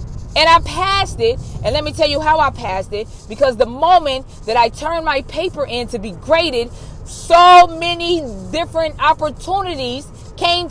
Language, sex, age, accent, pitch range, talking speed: English, female, 20-39, American, 245-330 Hz, 170 wpm